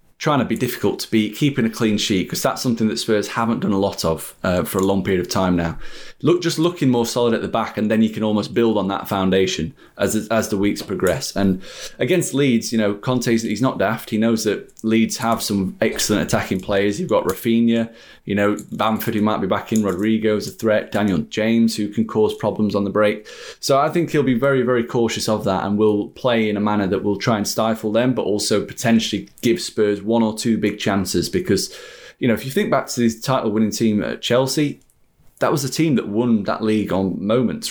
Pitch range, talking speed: 100-115 Hz, 235 wpm